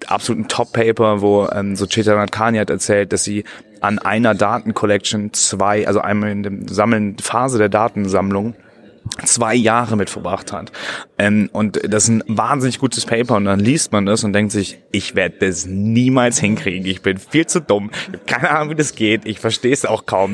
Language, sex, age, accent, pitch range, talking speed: English, male, 30-49, German, 100-115 Hz, 185 wpm